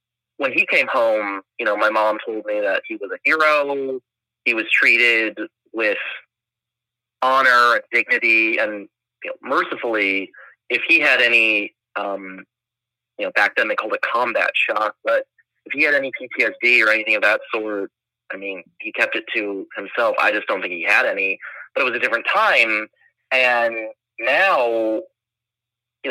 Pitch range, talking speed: 110-120 Hz, 170 wpm